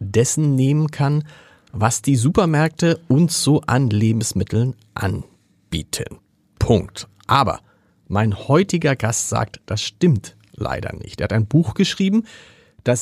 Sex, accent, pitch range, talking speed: male, German, 120-160 Hz, 125 wpm